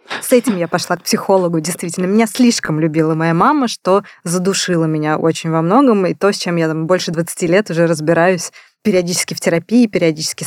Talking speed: 185 wpm